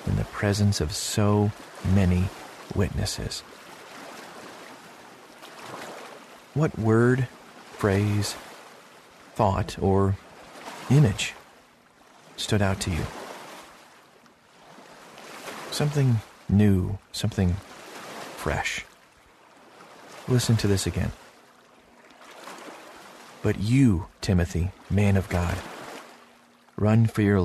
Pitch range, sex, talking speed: 95-115 Hz, male, 75 wpm